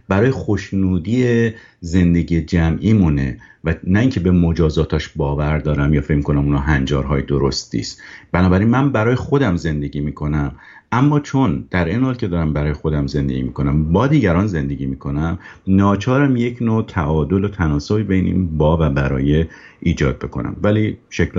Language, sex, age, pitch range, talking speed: Persian, male, 50-69, 75-95 Hz, 155 wpm